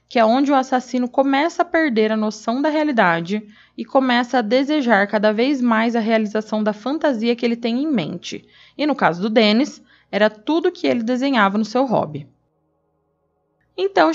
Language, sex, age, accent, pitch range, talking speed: Portuguese, female, 20-39, Brazilian, 220-275 Hz, 180 wpm